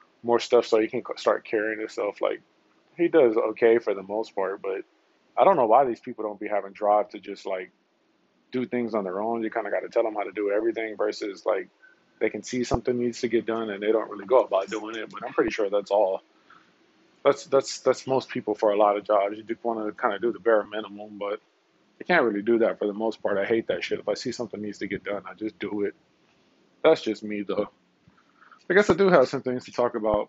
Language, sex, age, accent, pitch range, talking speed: English, male, 20-39, American, 105-125 Hz, 260 wpm